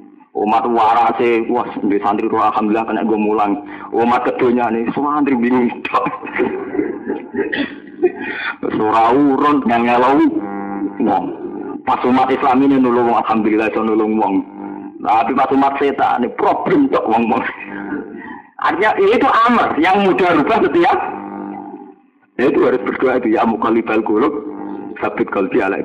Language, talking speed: Indonesian, 130 wpm